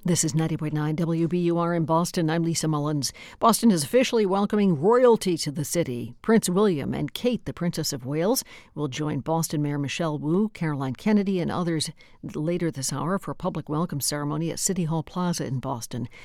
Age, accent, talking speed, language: 60-79, American, 180 wpm, English